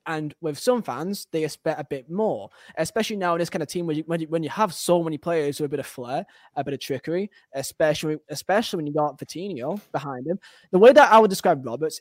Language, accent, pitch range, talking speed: English, British, 150-195 Hz, 250 wpm